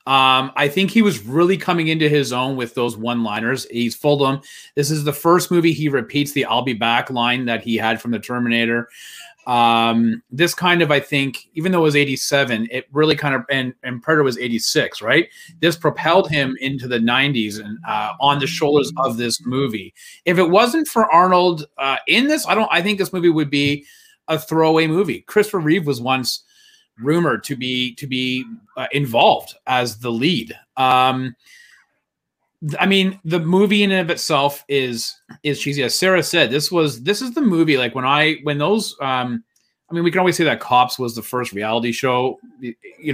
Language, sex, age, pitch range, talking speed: English, male, 30-49, 125-165 Hz, 205 wpm